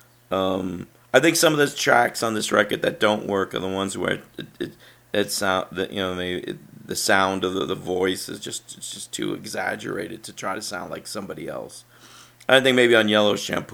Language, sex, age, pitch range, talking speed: English, male, 40-59, 95-120 Hz, 225 wpm